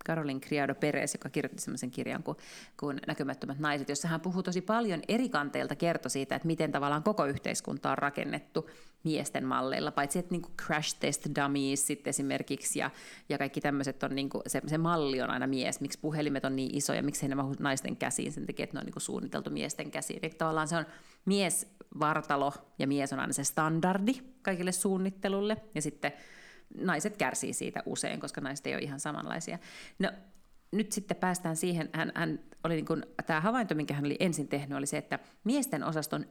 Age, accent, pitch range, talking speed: 30-49, native, 145-195 Hz, 180 wpm